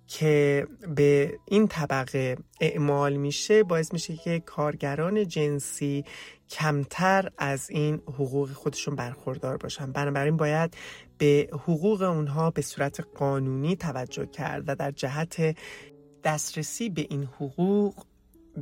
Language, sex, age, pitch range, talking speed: English, male, 30-49, 140-165 Hz, 115 wpm